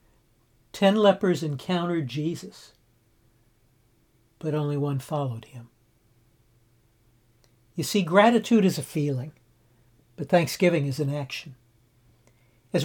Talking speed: 100 wpm